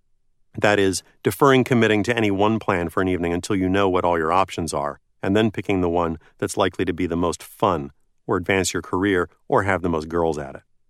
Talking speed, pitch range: 230 wpm, 90-125 Hz